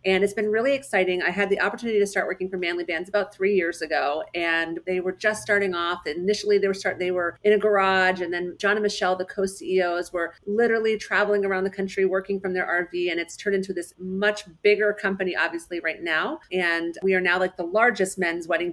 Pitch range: 175-205 Hz